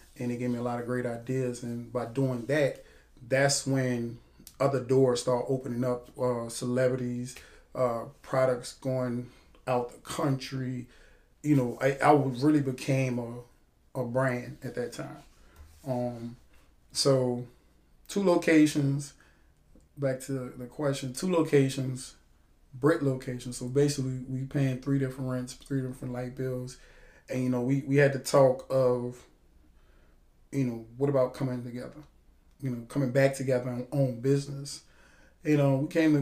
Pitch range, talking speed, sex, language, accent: 125-140 Hz, 150 wpm, male, English, American